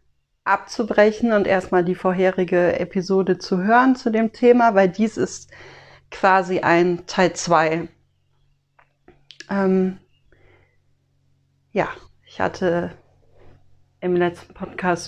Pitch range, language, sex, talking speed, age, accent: 160-210 Hz, German, female, 100 wpm, 40-59, German